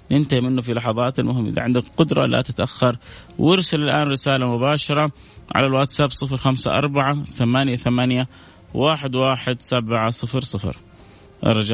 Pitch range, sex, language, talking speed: 110-135 Hz, male, Arabic, 90 wpm